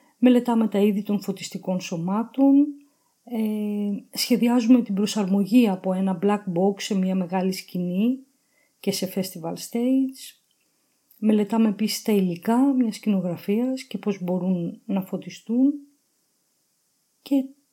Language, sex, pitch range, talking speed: Greek, female, 195-255 Hz, 110 wpm